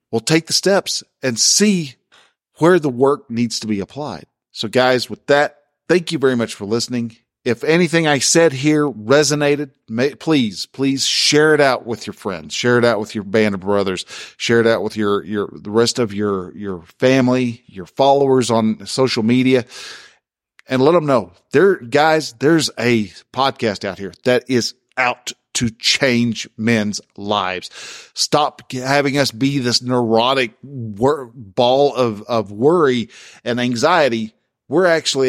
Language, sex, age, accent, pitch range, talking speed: English, male, 50-69, American, 110-140 Hz, 165 wpm